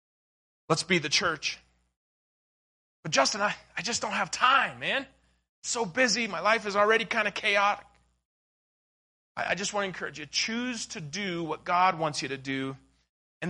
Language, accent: English, American